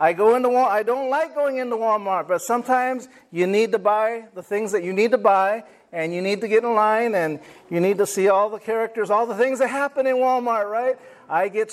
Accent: American